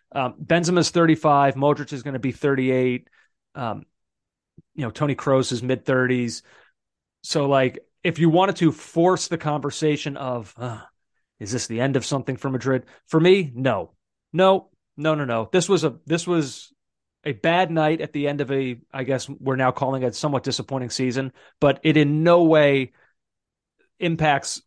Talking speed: 175 wpm